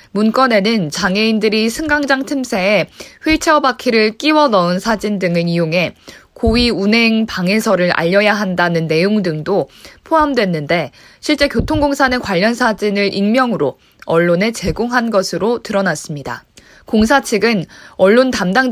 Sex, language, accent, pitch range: female, Korean, native, 185-245 Hz